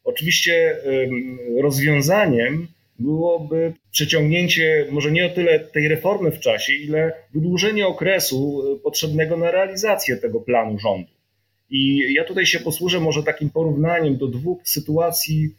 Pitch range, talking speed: 135-160 Hz, 125 wpm